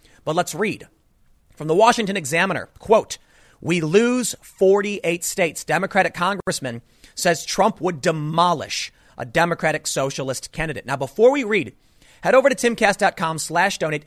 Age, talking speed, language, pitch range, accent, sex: 30-49, 130 wpm, English, 150-205 Hz, American, male